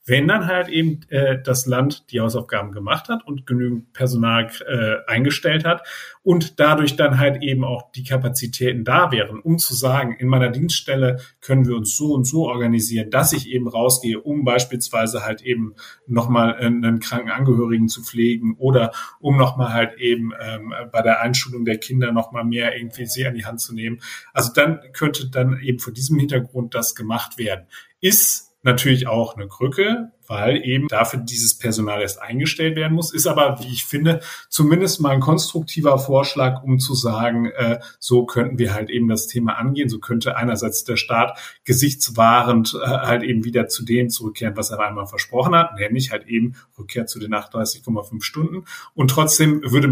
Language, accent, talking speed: German, German, 180 wpm